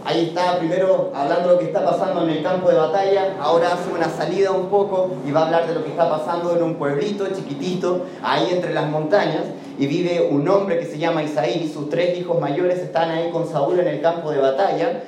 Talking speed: 235 wpm